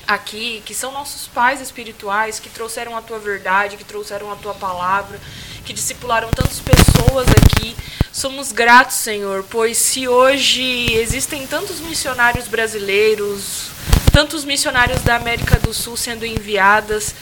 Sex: female